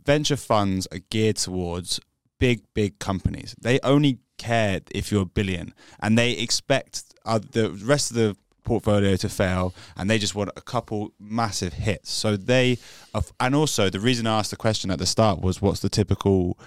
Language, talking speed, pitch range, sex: English, 185 wpm, 95-115 Hz, male